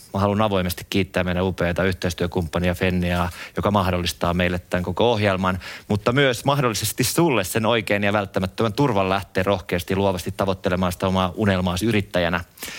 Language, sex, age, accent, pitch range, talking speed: Finnish, male, 30-49, native, 90-105 Hz, 145 wpm